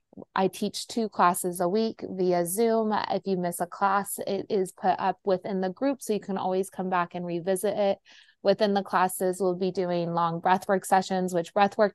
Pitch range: 180-200 Hz